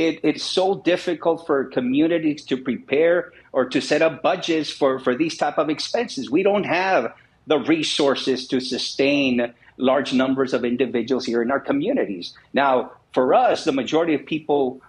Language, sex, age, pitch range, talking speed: English, male, 50-69, 135-185 Hz, 165 wpm